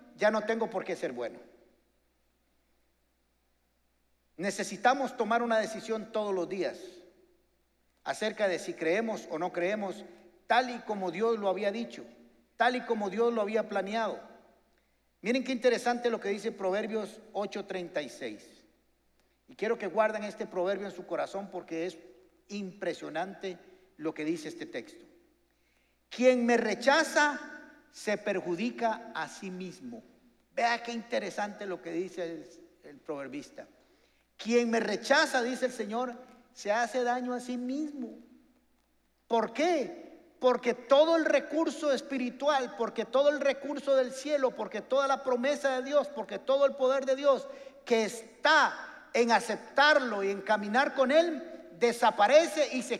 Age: 50-69